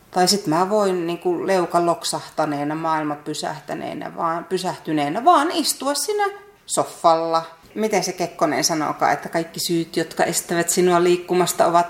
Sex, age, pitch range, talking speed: female, 30-49, 170-270 Hz, 130 wpm